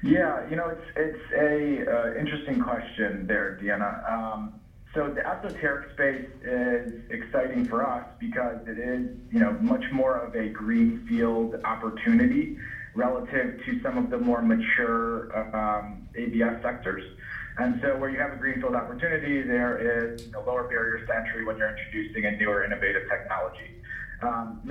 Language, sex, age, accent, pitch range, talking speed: English, male, 30-49, American, 110-145 Hz, 155 wpm